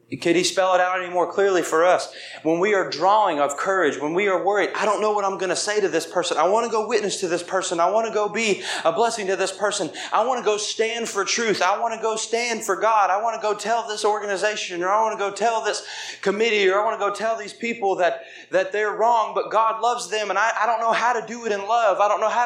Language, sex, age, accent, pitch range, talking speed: English, male, 30-49, American, 190-230 Hz, 290 wpm